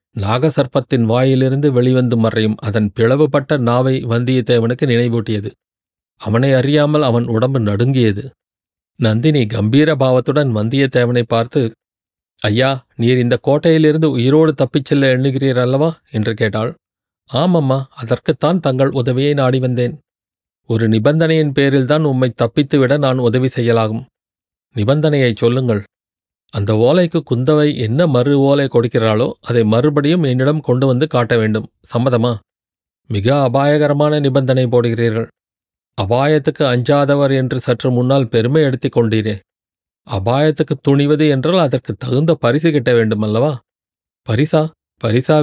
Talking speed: 105 wpm